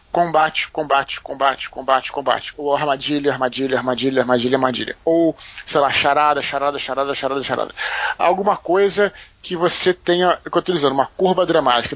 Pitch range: 140-170 Hz